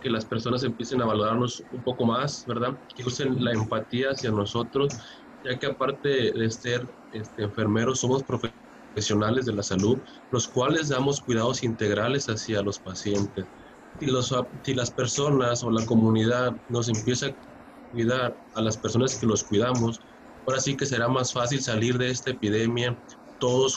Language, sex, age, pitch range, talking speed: Spanish, male, 20-39, 110-130 Hz, 165 wpm